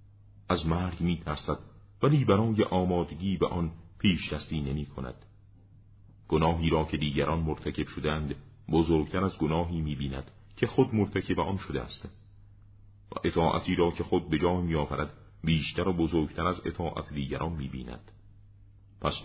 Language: Persian